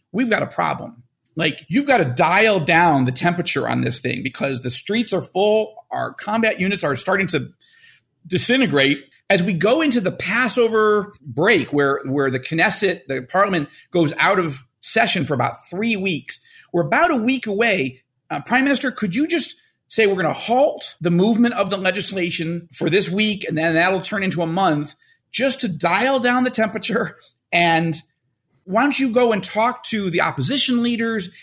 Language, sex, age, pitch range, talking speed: English, male, 40-59, 160-235 Hz, 185 wpm